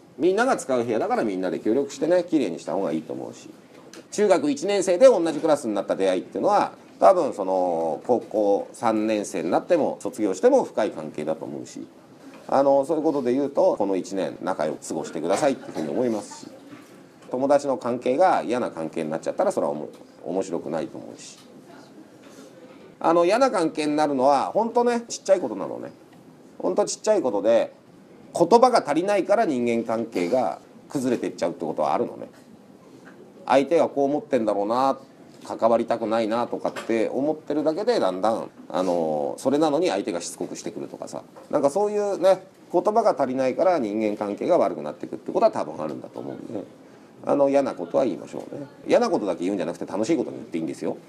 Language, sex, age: Japanese, male, 40-59